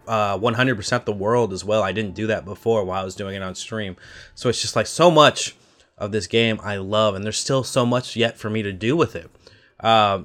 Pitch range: 95-115 Hz